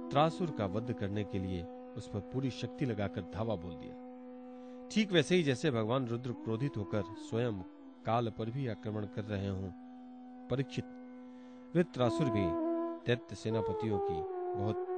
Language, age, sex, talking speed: Hindi, 40-59, male, 135 wpm